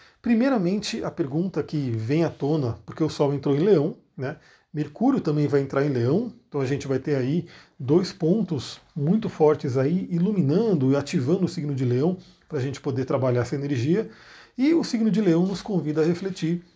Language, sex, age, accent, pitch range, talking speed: Portuguese, male, 40-59, Brazilian, 140-185 Hz, 195 wpm